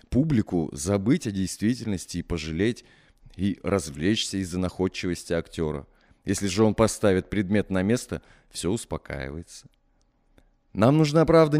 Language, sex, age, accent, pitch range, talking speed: Russian, male, 20-39, native, 100-140 Hz, 120 wpm